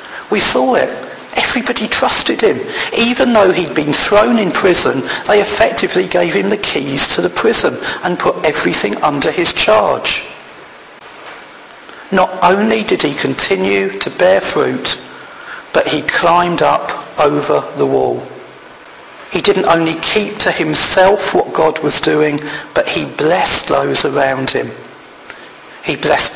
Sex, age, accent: male, 40-59, British